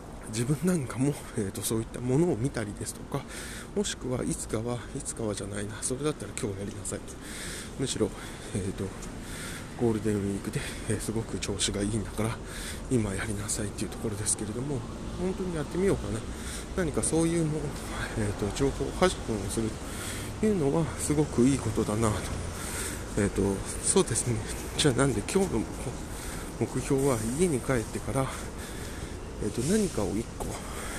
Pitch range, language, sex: 105-135 Hz, Japanese, male